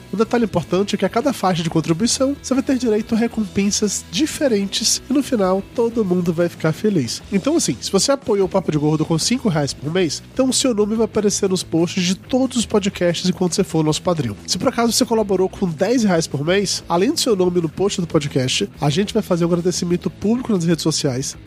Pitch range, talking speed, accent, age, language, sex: 170-225 Hz, 240 wpm, Brazilian, 20-39, Portuguese, male